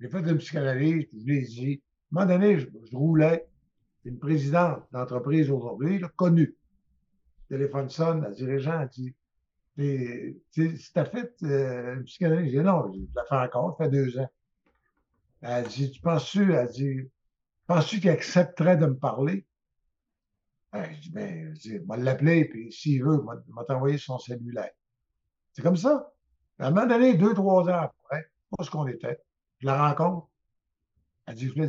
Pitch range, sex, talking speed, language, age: 125-165 Hz, male, 185 wpm, French, 60-79